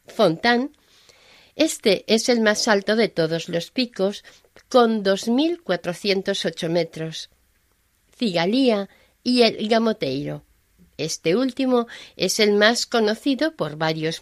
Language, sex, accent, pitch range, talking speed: Spanish, female, Spanish, 170-230 Hz, 120 wpm